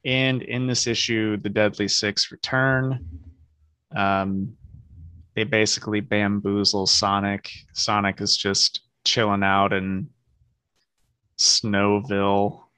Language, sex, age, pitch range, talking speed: English, male, 20-39, 95-115 Hz, 95 wpm